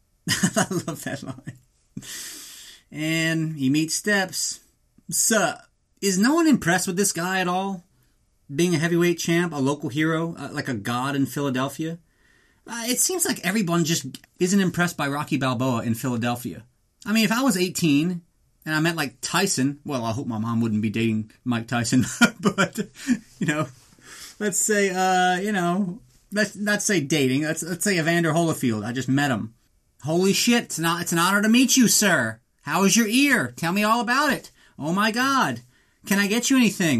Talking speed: 185 wpm